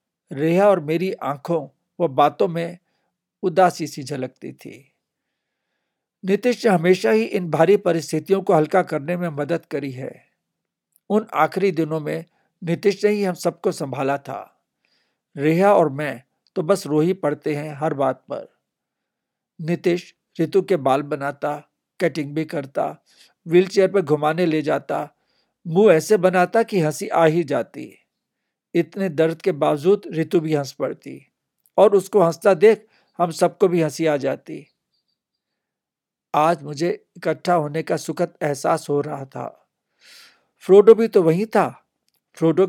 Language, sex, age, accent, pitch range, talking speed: Hindi, male, 60-79, native, 155-190 Hz, 145 wpm